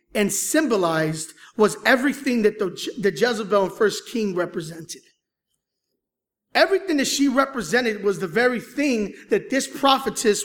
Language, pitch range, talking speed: English, 215-325 Hz, 125 wpm